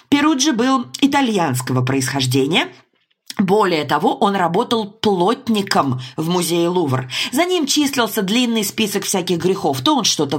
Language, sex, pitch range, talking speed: Russian, female, 170-240 Hz, 125 wpm